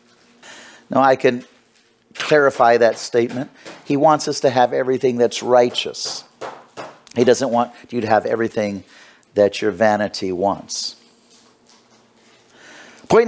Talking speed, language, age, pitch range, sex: 115 wpm, English, 50-69, 125-175 Hz, male